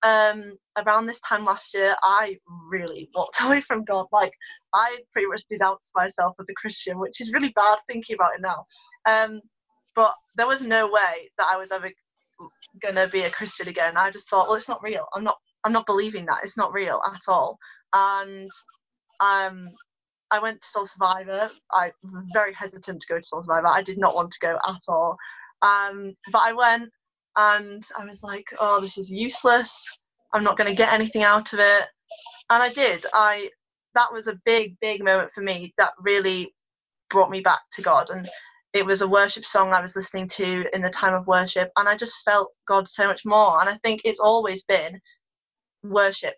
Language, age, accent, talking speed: English, 20-39, British, 200 wpm